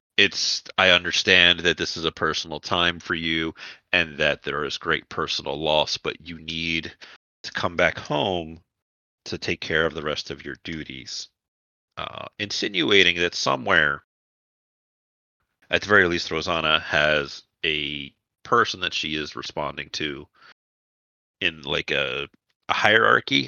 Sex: male